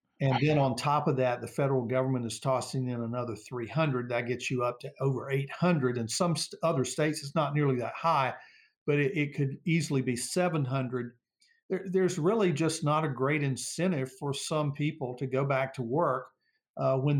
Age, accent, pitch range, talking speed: 50-69, American, 130-160 Hz, 190 wpm